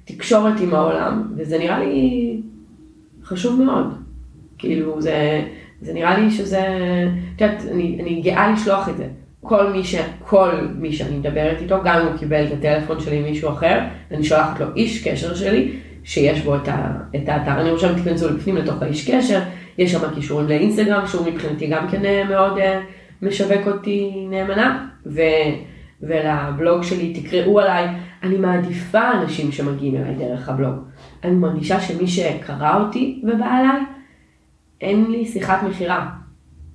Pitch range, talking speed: 155-195 Hz, 150 wpm